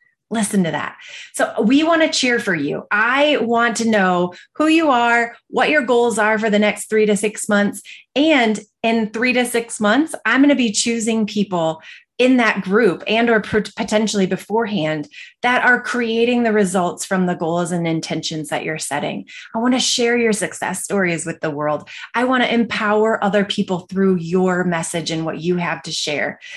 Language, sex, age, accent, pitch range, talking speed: English, female, 30-49, American, 180-230 Hz, 190 wpm